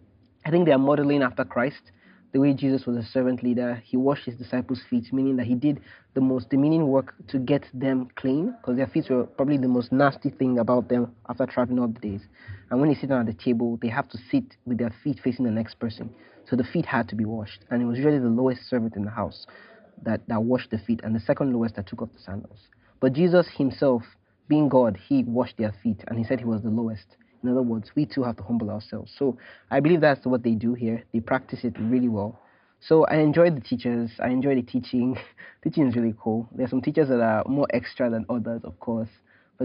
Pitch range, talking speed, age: 115-135 Hz, 240 wpm, 20-39